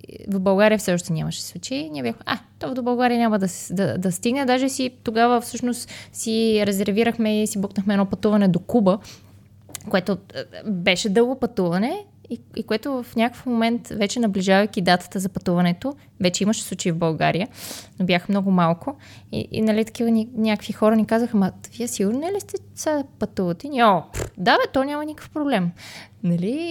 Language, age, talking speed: Bulgarian, 20-39, 180 wpm